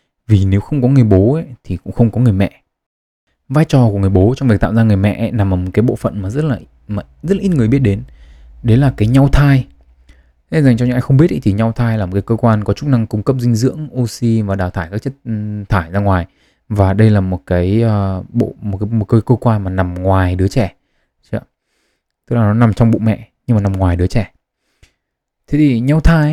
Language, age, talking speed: Vietnamese, 20-39, 250 wpm